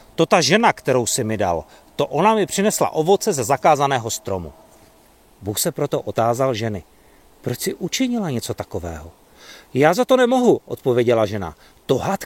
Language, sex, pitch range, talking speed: Czech, male, 110-155 Hz, 155 wpm